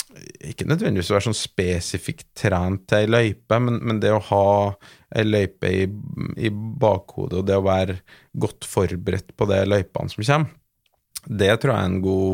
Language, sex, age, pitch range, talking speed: English, male, 20-39, 95-110 Hz, 170 wpm